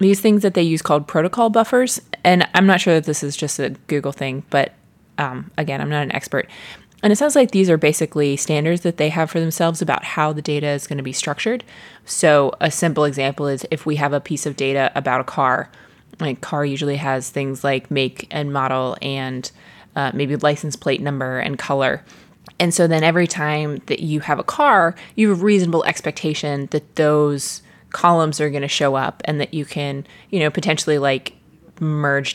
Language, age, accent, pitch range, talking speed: English, 20-39, American, 140-170 Hz, 210 wpm